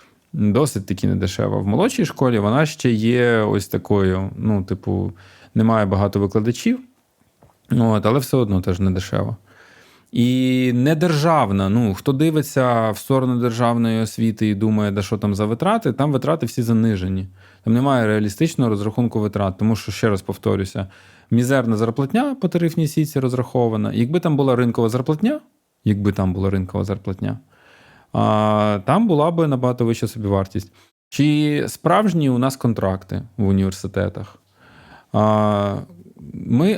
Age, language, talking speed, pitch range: 20-39, Ukrainian, 135 wpm, 100-130 Hz